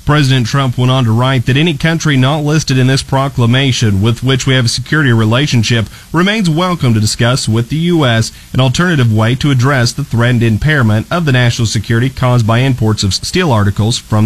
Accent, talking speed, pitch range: American, 200 wpm, 115-140 Hz